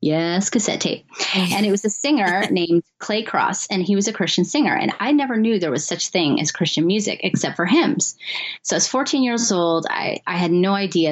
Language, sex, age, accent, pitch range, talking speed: English, female, 30-49, American, 165-210 Hz, 225 wpm